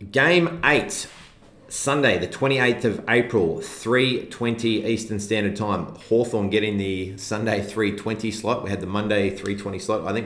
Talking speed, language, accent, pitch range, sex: 145 wpm, English, Australian, 95-110 Hz, male